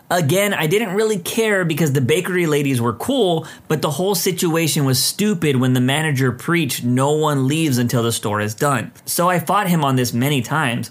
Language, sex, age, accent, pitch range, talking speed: English, male, 30-49, American, 125-180 Hz, 205 wpm